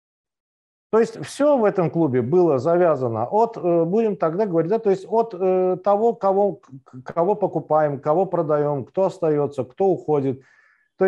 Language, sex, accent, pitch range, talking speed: Russian, male, native, 135-190 Hz, 130 wpm